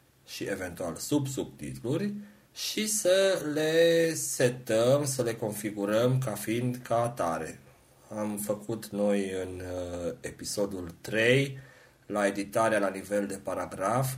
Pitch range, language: 100-130 Hz, Romanian